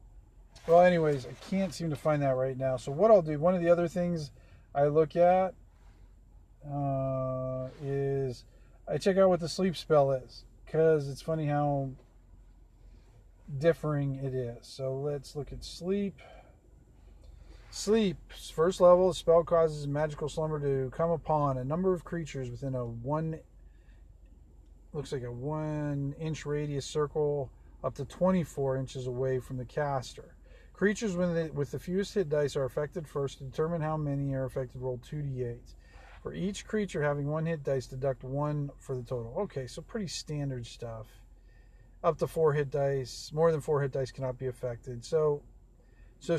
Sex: male